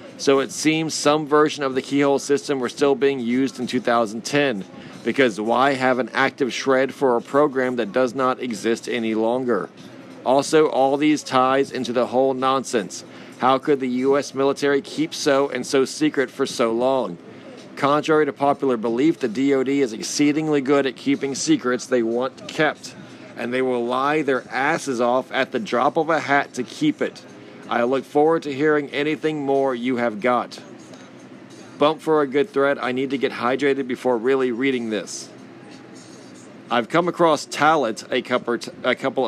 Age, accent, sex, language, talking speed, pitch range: 40-59, American, male, English, 170 wpm, 125-145 Hz